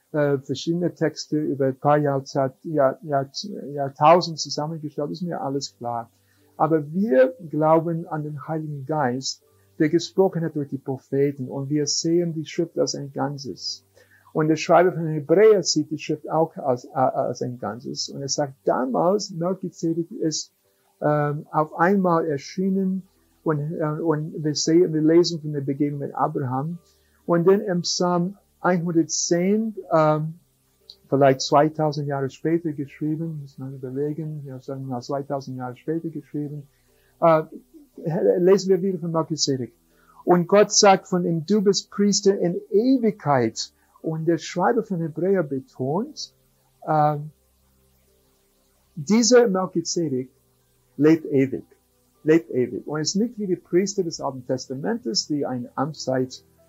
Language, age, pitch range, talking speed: German, 50-69, 135-170 Hz, 140 wpm